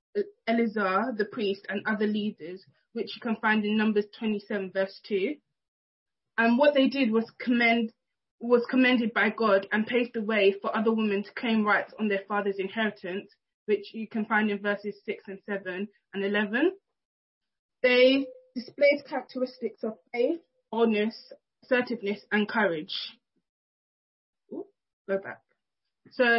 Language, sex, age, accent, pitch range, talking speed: English, female, 20-39, British, 215-255 Hz, 140 wpm